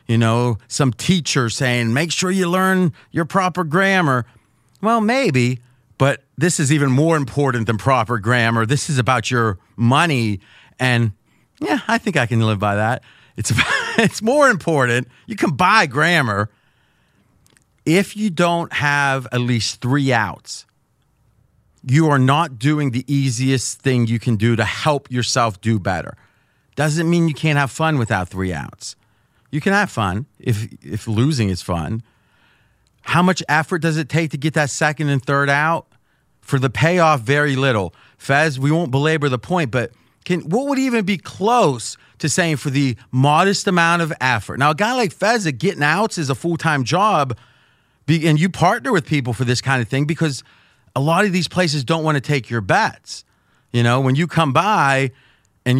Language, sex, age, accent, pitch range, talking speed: English, male, 40-59, American, 120-165 Hz, 180 wpm